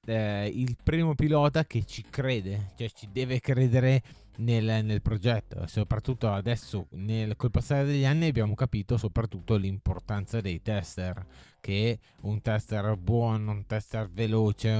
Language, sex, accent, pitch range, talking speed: Italian, male, native, 100-115 Hz, 140 wpm